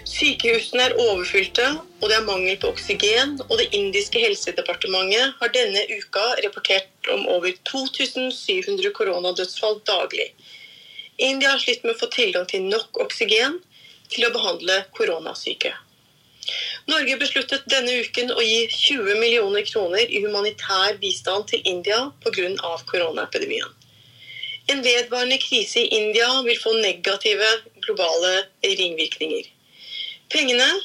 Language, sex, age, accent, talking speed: English, female, 30-49, Swedish, 125 wpm